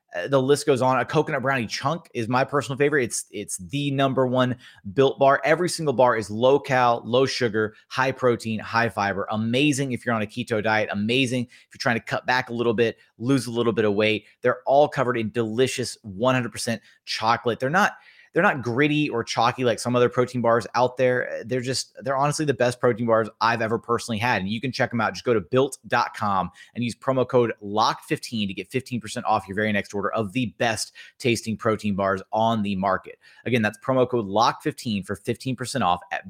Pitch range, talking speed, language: 110-140 Hz, 215 wpm, English